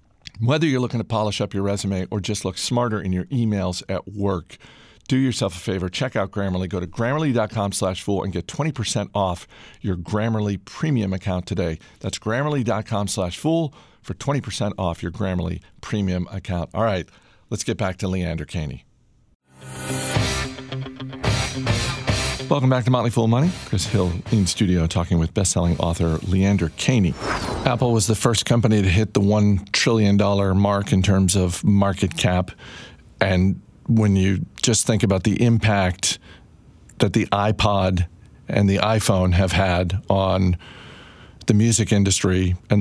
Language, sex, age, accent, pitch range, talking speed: English, male, 50-69, American, 90-115 Hz, 150 wpm